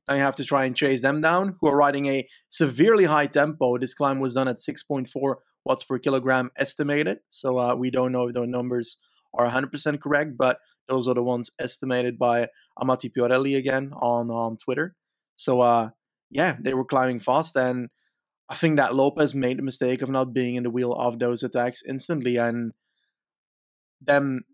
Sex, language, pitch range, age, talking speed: male, English, 125-140 Hz, 20-39, 185 wpm